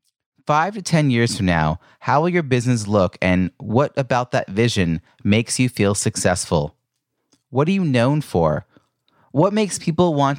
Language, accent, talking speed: English, American, 170 wpm